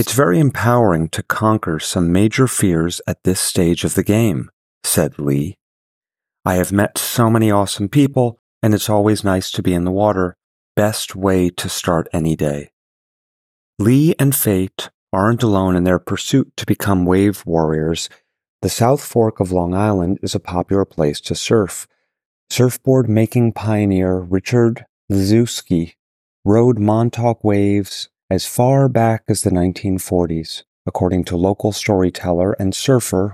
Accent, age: American, 30-49